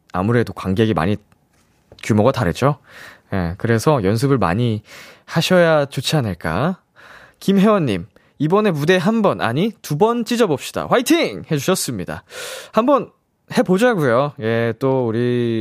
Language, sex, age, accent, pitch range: Korean, male, 20-39, native, 115-175 Hz